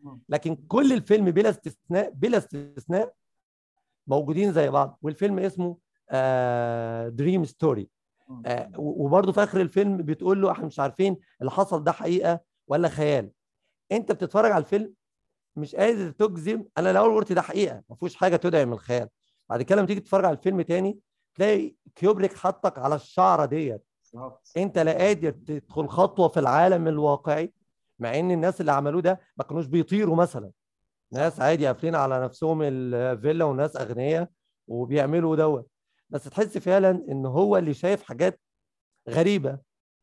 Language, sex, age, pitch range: Arabic, male, 50-69, 135-190 Hz